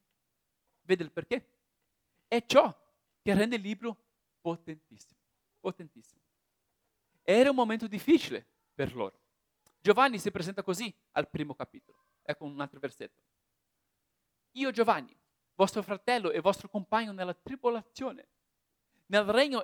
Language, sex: Italian, male